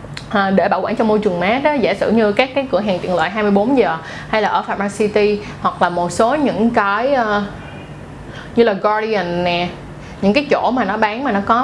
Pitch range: 200-255 Hz